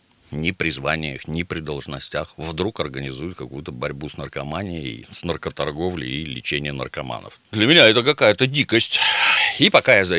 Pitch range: 70-95 Hz